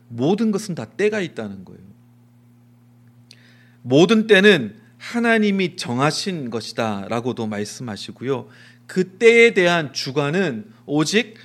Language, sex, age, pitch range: Korean, male, 40-59, 120-180 Hz